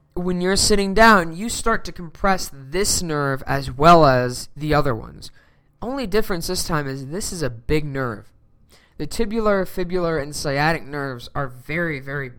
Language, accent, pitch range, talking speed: English, American, 130-185 Hz, 170 wpm